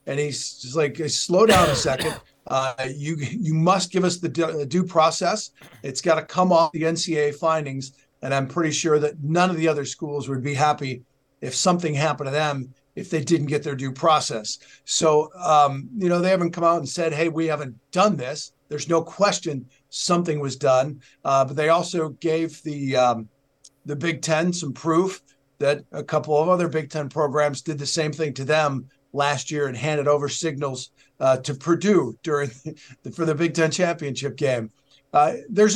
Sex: male